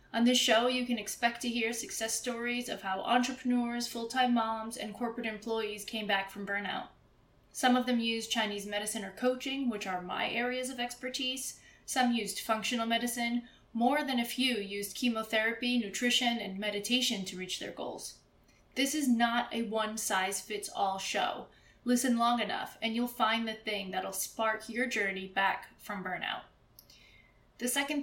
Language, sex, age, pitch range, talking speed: English, female, 20-39, 210-245 Hz, 165 wpm